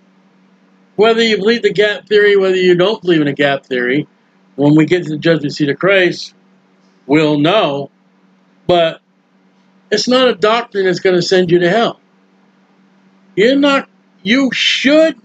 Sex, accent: male, American